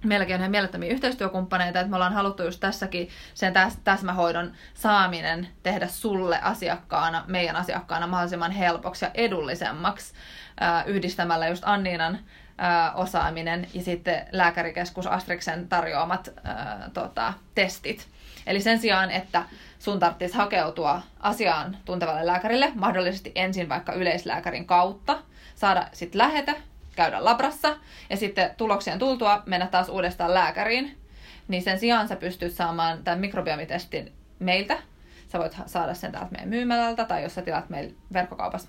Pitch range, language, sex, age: 175-220 Hz, Finnish, female, 20-39